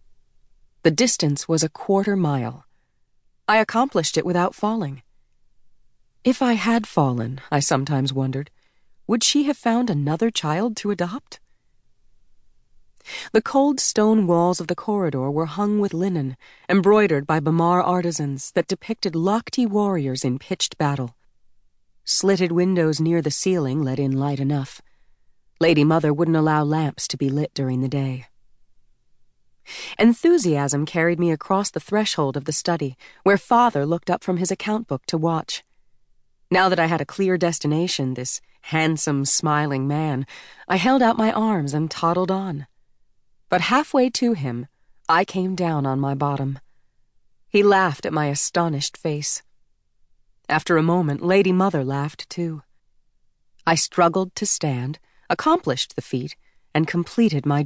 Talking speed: 145 wpm